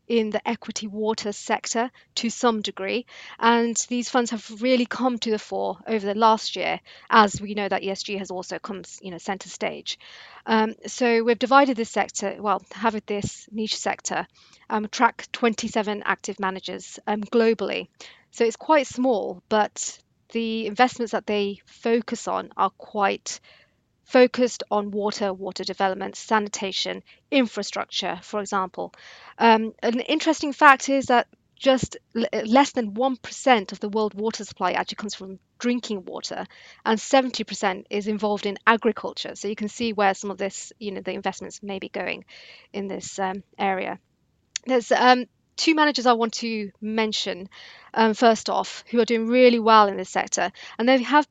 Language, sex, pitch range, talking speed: English, female, 200-240 Hz, 165 wpm